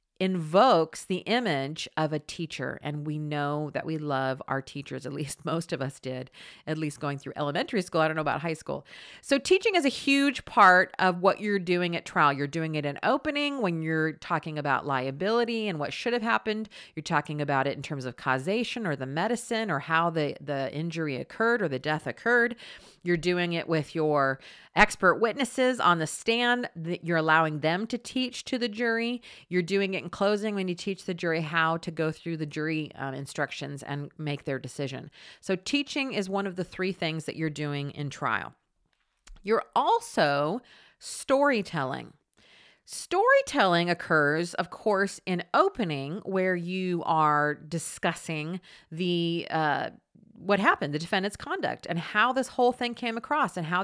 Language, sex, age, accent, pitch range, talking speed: English, female, 40-59, American, 150-205 Hz, 180 wpm